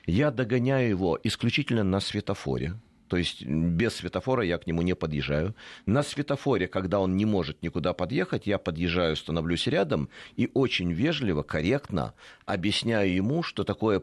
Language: Russian